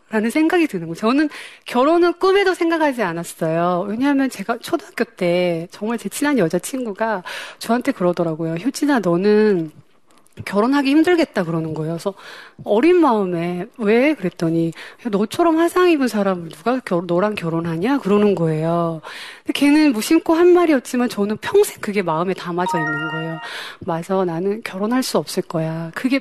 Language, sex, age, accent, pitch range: Korean, female, 30-49, native, 185-290 Hz